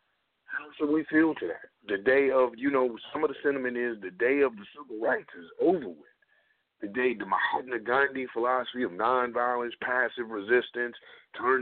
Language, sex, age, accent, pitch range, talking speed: English, male, 50-69, American, 120-155 Hz, 180 wpm